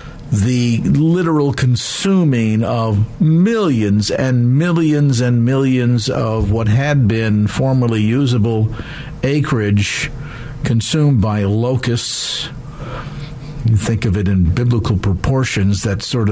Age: 50-69